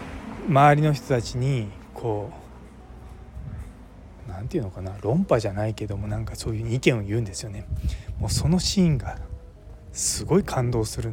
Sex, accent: male, native